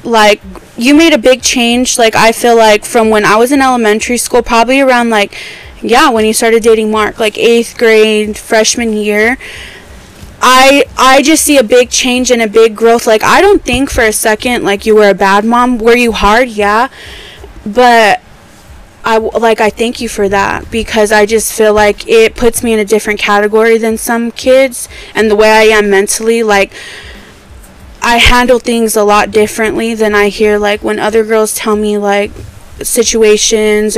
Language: English